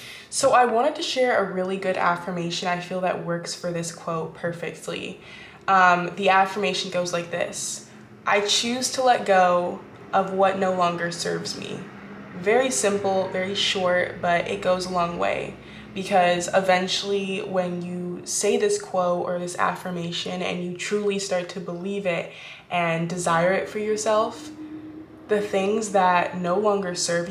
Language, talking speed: English, 160 wpm